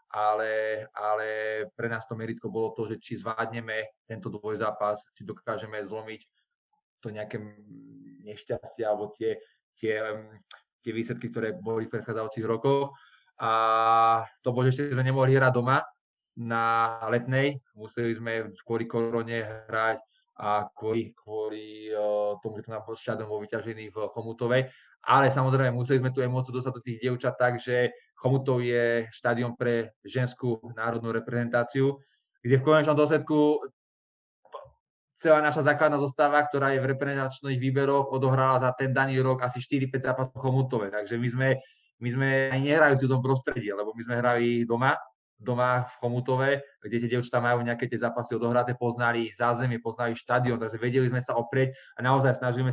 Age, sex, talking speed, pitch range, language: 20-39, male, 150 wpm, 115-130 Hz, Czech